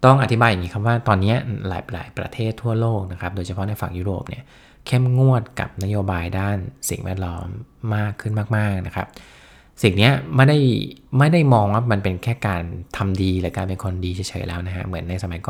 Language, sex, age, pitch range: Thai, male, 20-39, 95-115 Hz